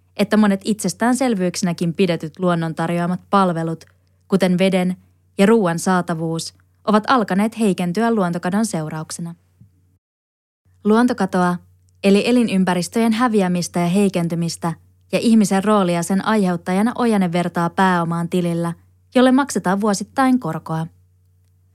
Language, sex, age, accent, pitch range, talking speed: Finnish, female, 20-39, native, 165-205 Hz, 100 wpm